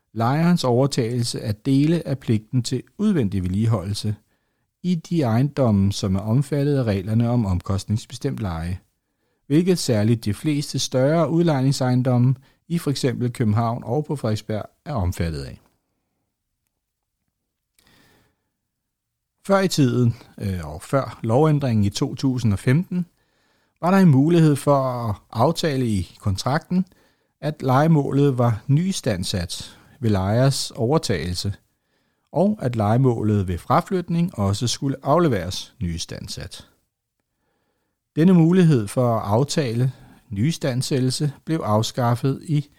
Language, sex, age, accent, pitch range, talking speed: Danish, male, 60-79, native, 105-145 Hz, 105 wpm